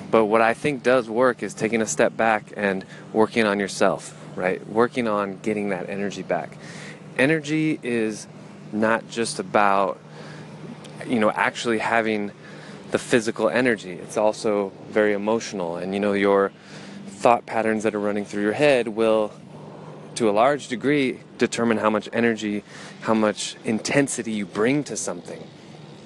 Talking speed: 150 wpm